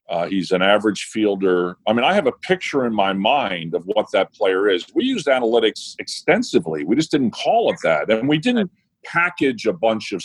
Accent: American